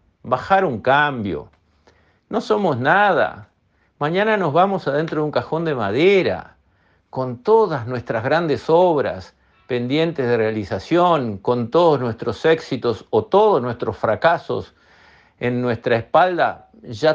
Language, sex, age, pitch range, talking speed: Spanish, male, 50-69, 110-155 Hz, 125 wpm